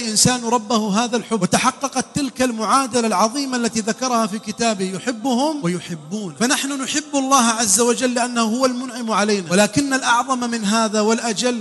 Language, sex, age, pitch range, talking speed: English, male, 30-49, 185-240 Hz, 145 wpm